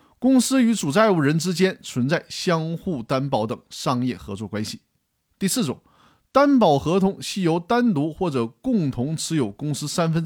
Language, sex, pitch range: Chinese, male, 135-205 Hz